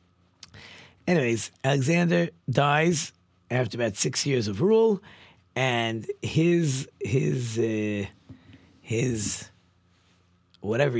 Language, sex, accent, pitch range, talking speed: English, male, American, 100-140 Hz, 80 wpm